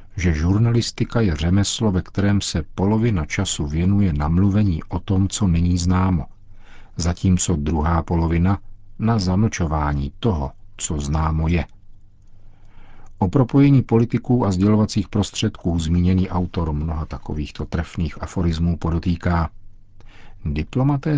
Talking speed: 110 wpm